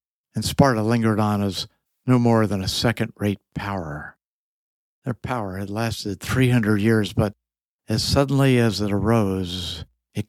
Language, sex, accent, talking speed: English, male, American, 140 wpm